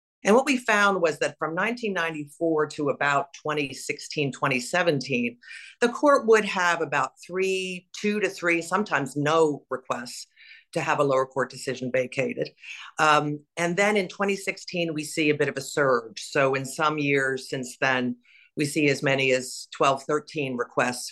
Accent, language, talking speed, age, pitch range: American, English, 160 wpm, 50-69, 130-170 Hz